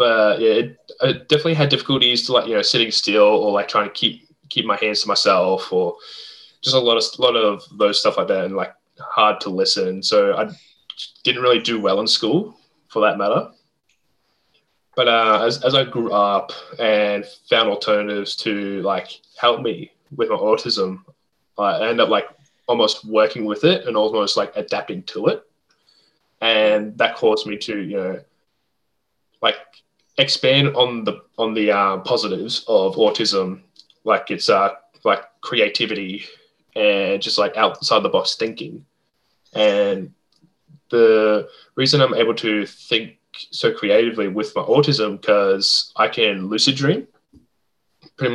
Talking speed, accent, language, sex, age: 165 wpm, Australian, English, male, 10-29